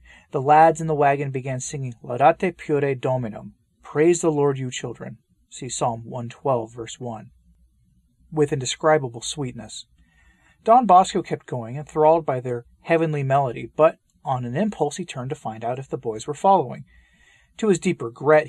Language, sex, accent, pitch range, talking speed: English, male, American, 120-160 Hz, 160 wpm